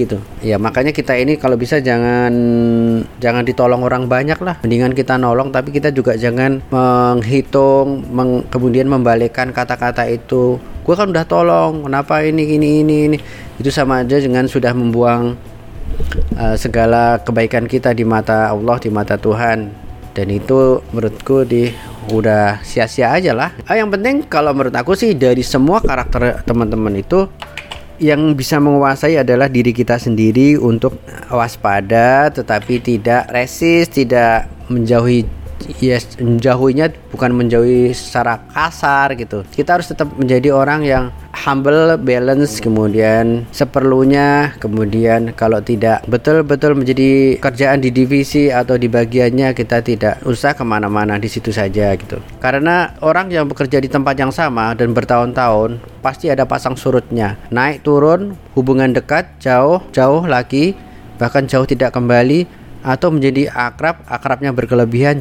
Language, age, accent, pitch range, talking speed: Indonesian, 30-49, native, 115-140 Hz, 135 wpm